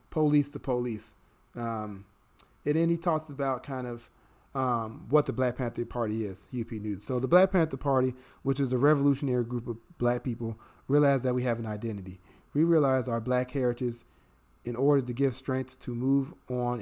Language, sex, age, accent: English, male, 40-59, American